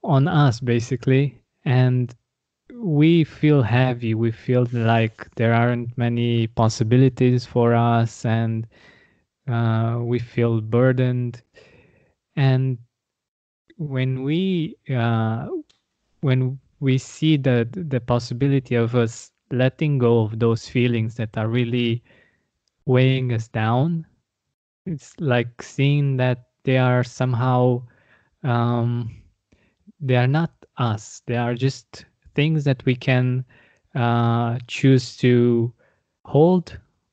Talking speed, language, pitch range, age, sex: 105 wpm, English, 115-135 Hz, 20-39, male